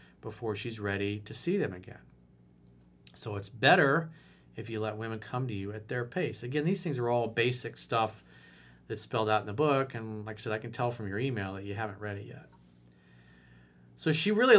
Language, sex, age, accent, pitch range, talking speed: English, male, 40-59, American, 100-155 Hz, 215 wpm